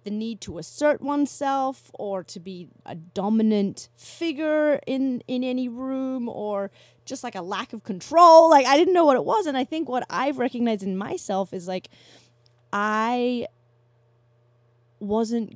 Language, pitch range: English, 160-205 Hz